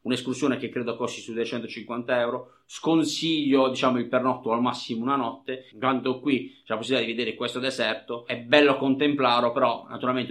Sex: male